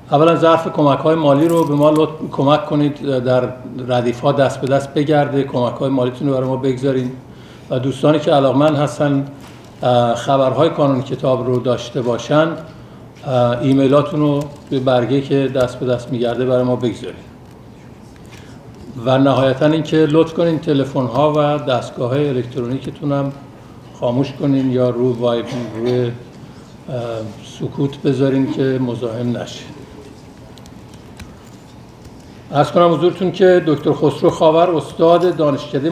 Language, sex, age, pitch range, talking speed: Persian, male, 60-79, 130-150 Hz, 135 wpm